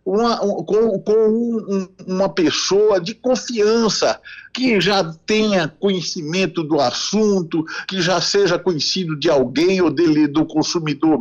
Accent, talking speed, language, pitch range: Brazilian, 130 wpm, Portuguese, 165-235 Hz